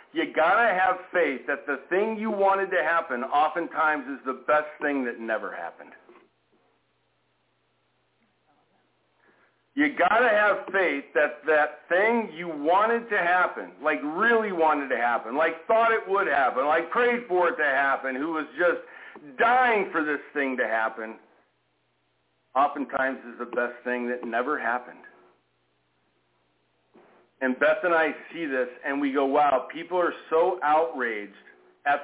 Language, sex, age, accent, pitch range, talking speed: English, male, 50-69, American, 110-170 Hz, 150 wpm